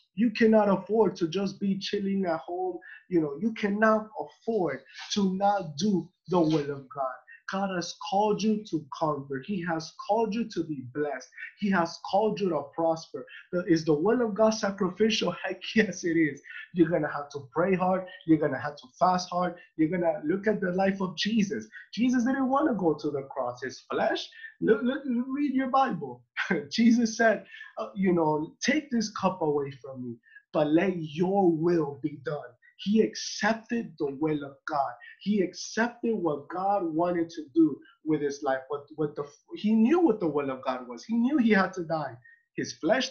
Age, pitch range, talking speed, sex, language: 20-39, 155-220 Hz, 195 wpm, male, English